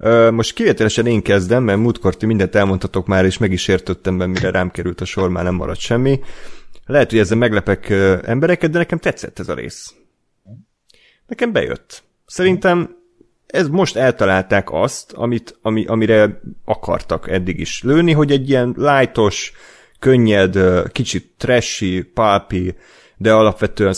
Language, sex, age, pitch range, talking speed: Hungarian, male, 30-49, 95-120 Hz, 145 wpm